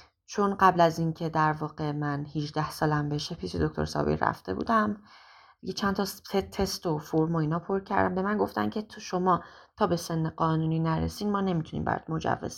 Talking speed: 185 wpm